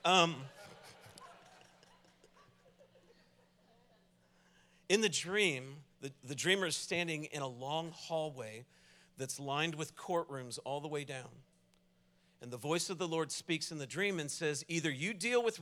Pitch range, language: 135-175 Hz, English